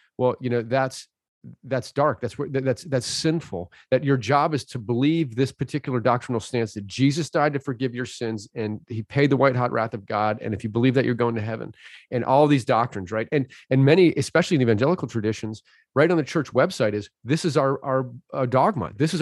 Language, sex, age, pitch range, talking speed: English, male, 40-59, 125-165 Hz, 220 wpm